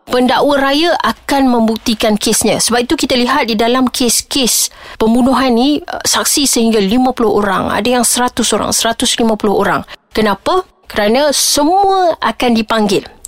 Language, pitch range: Malay, 205-255 Hz